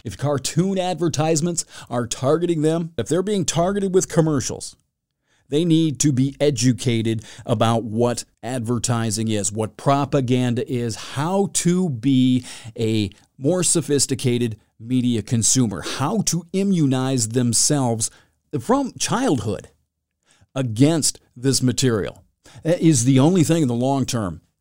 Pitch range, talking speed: 120-160 Hz, 120 wpm